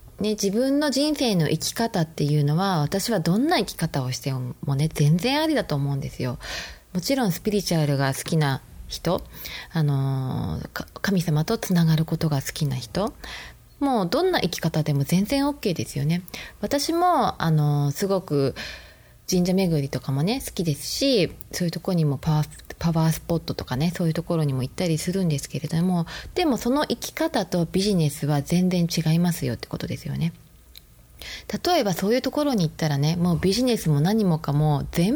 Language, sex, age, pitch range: Japanese, female, 20-39, 145-215 Hz